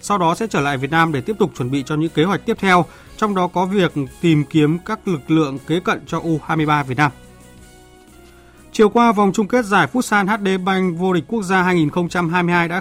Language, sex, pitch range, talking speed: Vietnamese, male, 150-185 Hz, 225 wpm